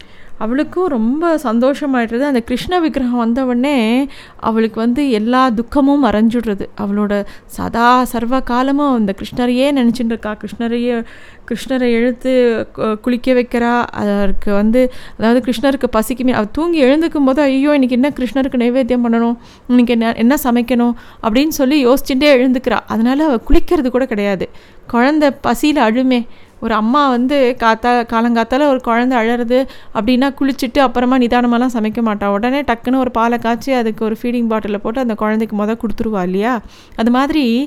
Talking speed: 135 wpm